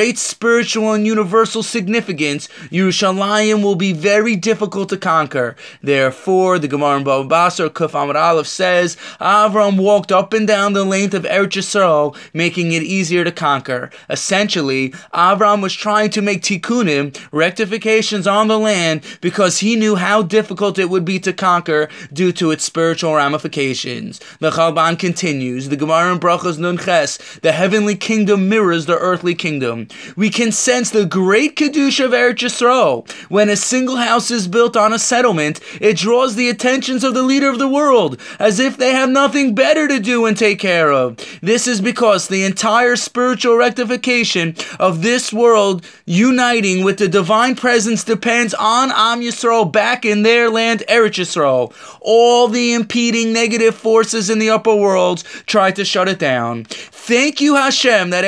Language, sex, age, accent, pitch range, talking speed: English, male, 20-39, American, 180-235 Hz, 160 wpm